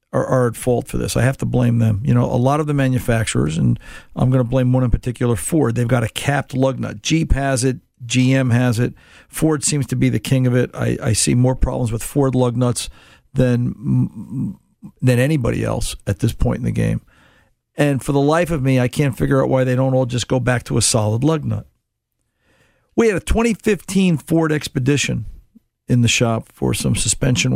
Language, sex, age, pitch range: English, male, 50-69, 120-145 Hz